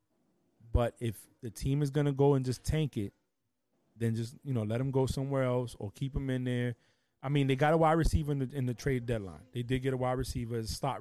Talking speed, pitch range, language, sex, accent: 250 wpm, 110-135 Hz, English, male, American